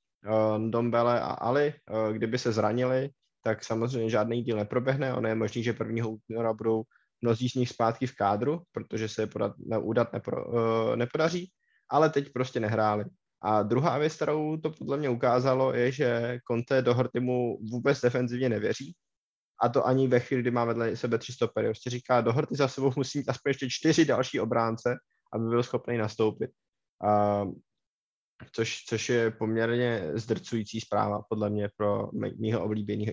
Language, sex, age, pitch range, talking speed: Czech, male, 20-39, 110-130 Hz, 160 wpm